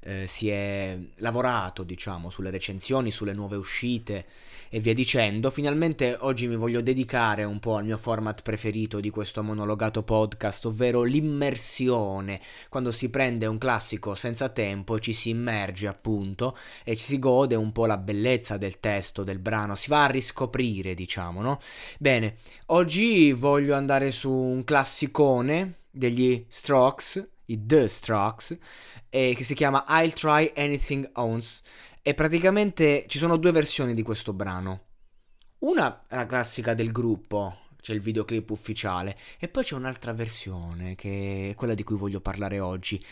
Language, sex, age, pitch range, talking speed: Italian, male, 20-39, 105-130 Hz, 155 wpm